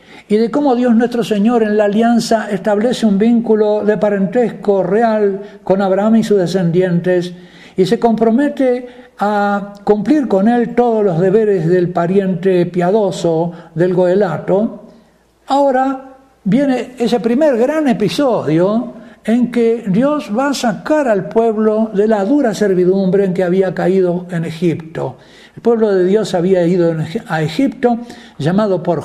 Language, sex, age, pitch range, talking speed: Spanish, male, 60-79, 185-240 Hz, 145 wpm